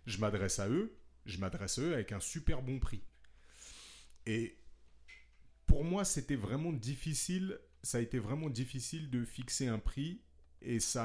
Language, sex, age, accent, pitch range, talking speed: French, male, 40-59, French, 90-115 Hz, 165 wpm